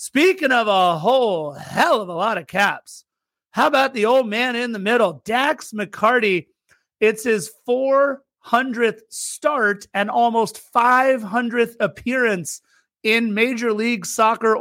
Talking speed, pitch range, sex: 130 wpm, 180-230 Hz, male